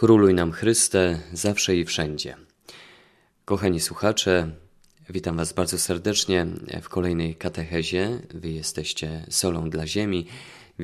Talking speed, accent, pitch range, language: 115 wpm, native, 85-100 Hz, Polish